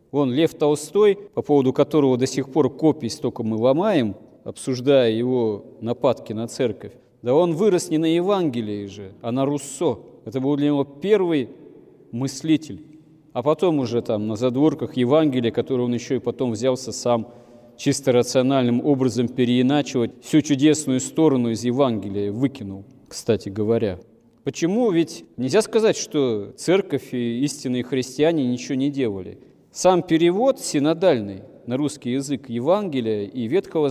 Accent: native